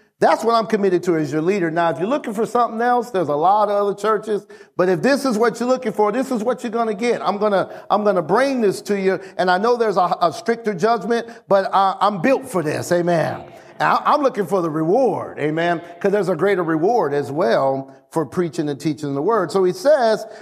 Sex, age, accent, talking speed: male, 50-69, American, 245 wpm